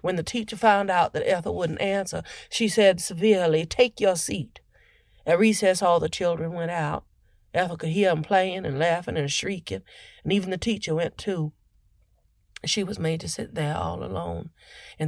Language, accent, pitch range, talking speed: English, American, 150-195 Hz, 185 wpm